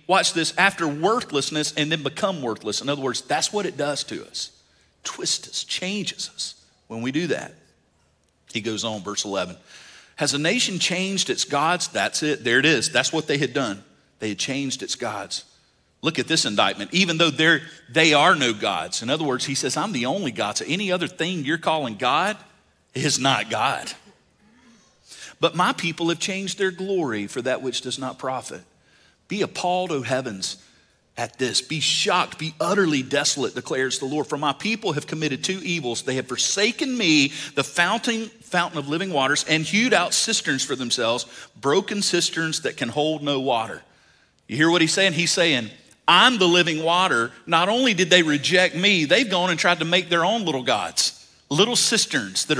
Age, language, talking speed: 40-59, English, 190 wpm